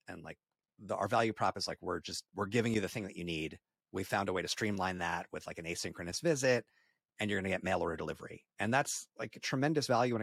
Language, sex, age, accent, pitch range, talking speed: English, male, 30-49, American, 90-115 Hz, 265 wpm